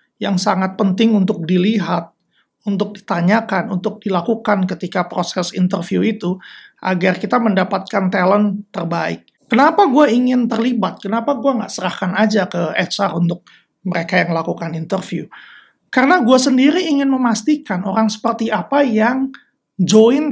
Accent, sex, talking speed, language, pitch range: native, male, 130 wpm, Indonesian, 195-245 Hz